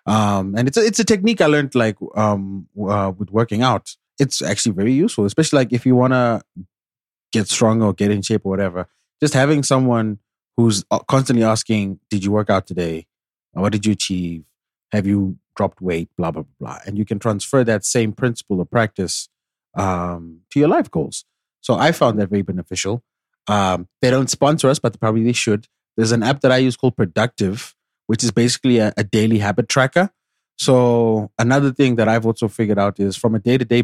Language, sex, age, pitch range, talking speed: English, male, 20-39, 100-120 Hz, 200 wpm